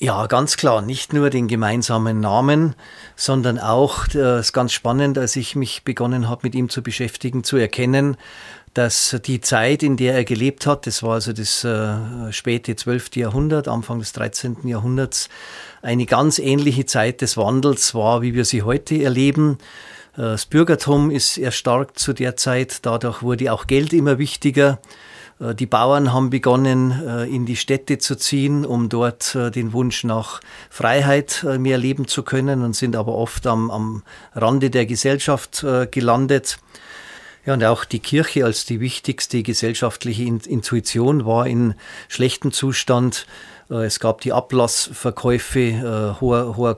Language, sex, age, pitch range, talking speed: German, male, 40-59, 115-135 Hz, 150 wpm